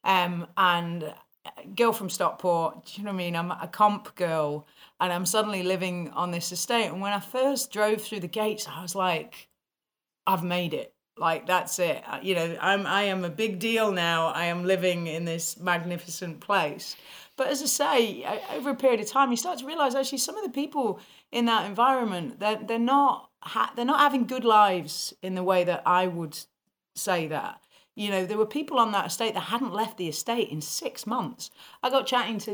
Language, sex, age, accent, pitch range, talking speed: English, female, 40-59, British, 170-215 Hz, 210 wpm